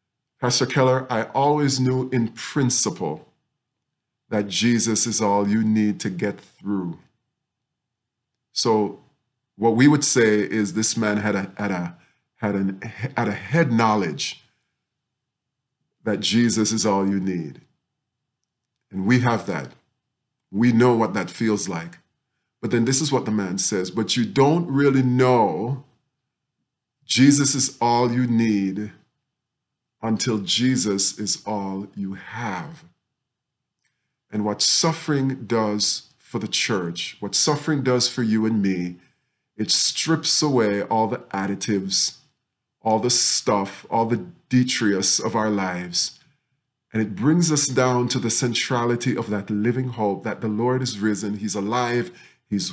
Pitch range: 105-130 Hz